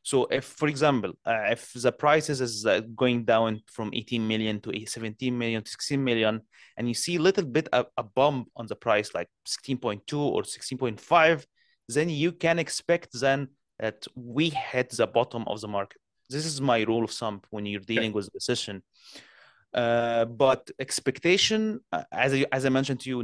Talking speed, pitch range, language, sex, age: 185 wpm, 115-140 Hz, English, male, 30-49